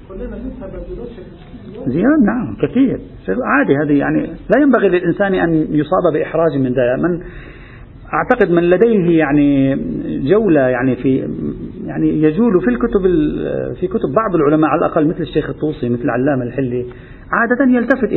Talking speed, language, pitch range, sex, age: 130 wpm, Arabic, 135-190 Hz, male, 40-59